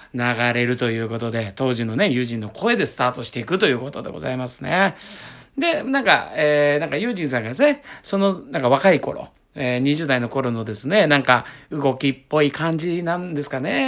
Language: Japanese